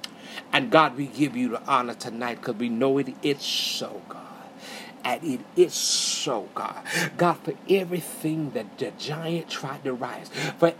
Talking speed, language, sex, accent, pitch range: 165 wpm, English, male, American, 160-230 Hz